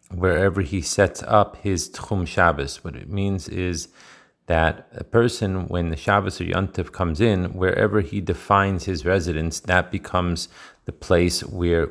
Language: Hebrew